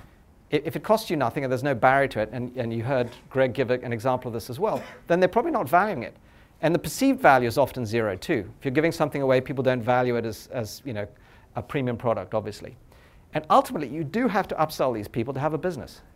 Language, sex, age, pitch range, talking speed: English, male, 40-59, 115-150 Hz, 250 wpm